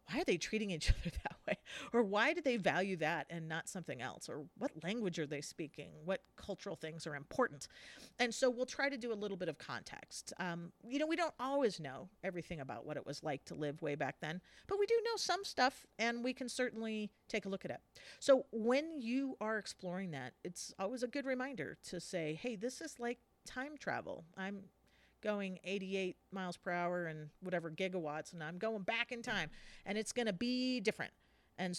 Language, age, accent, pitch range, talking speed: English, 40-59, American, 170-245 Hz, 215 wpm